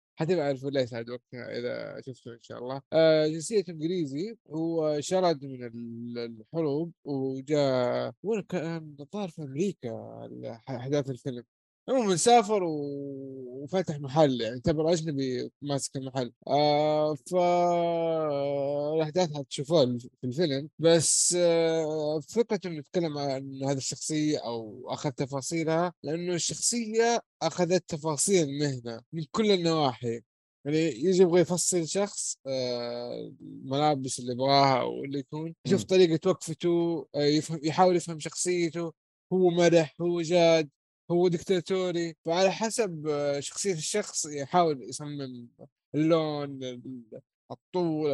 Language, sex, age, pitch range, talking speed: Arabic, male, 20-39, 135-170 Hz, 110 wpm